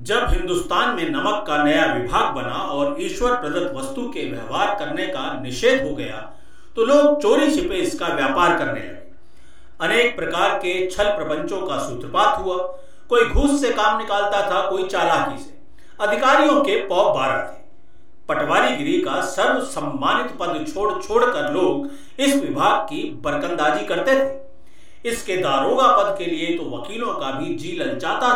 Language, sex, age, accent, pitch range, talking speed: Hindi, male, 50-69, native, 245-310 Hz, 160 wpm